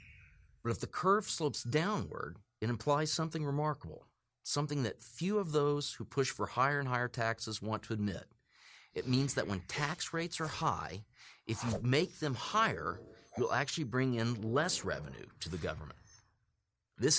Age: 40-59